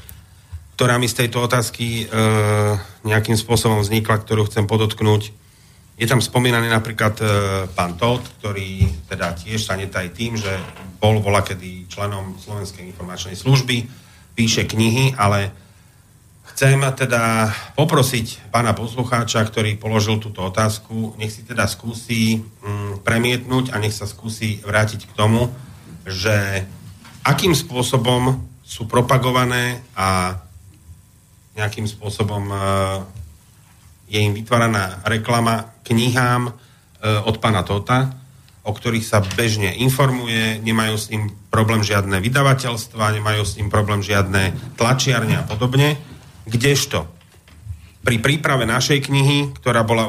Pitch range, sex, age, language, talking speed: 100-120 Hz, male, 40-59, Slovak, 120 wpm